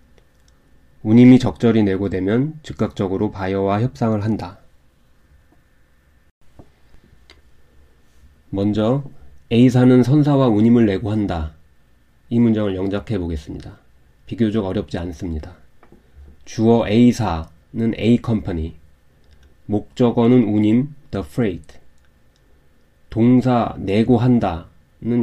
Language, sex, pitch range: Korean, male, 80-120 Hz